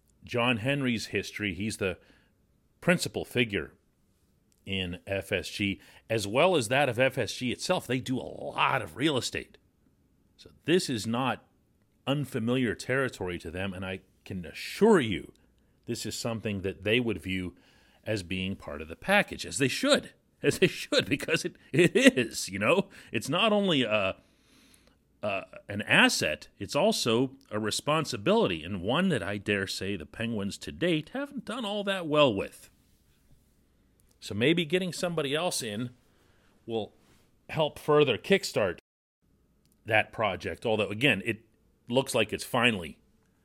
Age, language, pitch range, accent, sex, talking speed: 40-59, English, 100-135 Hz, American, male, 150 wpm